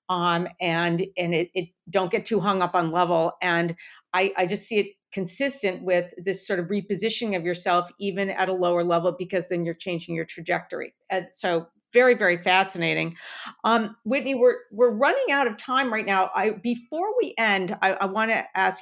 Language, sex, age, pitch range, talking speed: English, female, 50-69, 185-225 Hz, 195 wpm